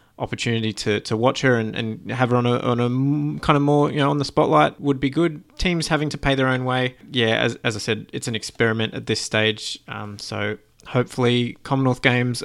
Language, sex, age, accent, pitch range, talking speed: English, male, 20-39, Australian, 110-135 Hz, 230 wpm